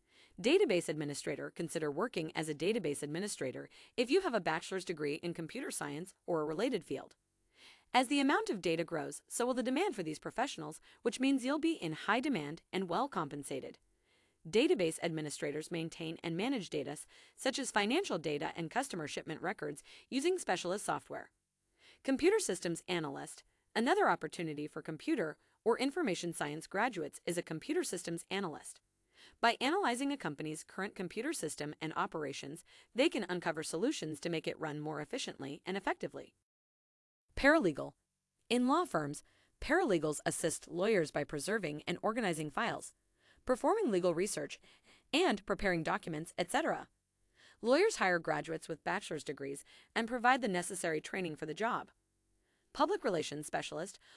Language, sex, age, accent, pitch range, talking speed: English, female, 30-49, American, 160-250 Hz, 150 wpm